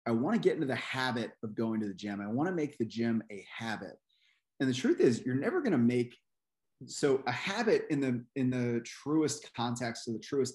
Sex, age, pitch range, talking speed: male, 30-49, 110-135 Hz, 240 wpm